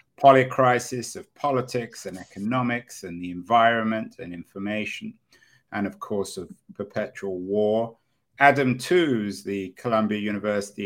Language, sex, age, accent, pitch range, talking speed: English, male, 50-69, British, 100-130 Hz, 115 wpm